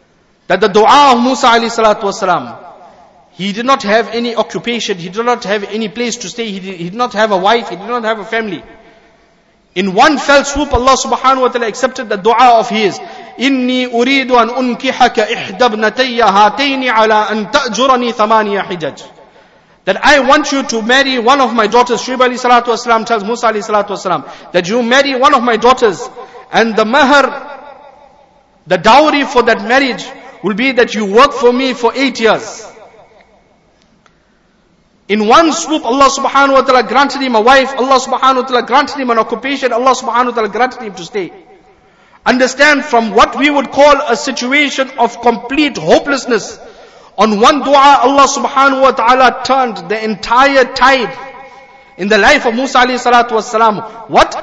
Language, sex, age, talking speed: English, male, 50-69, 160 wpm